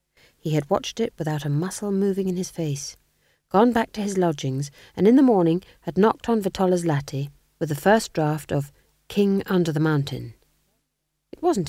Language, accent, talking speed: English, British, 185 wpm